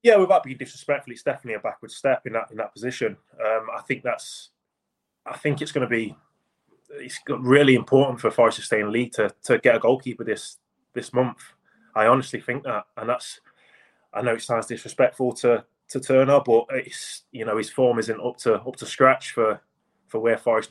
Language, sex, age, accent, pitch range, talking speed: English, male, 20-39, British, 110-130 Hz, 210 wpm